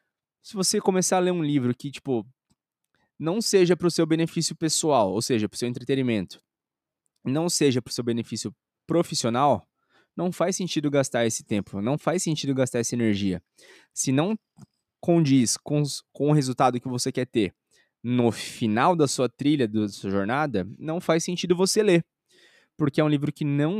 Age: 20-39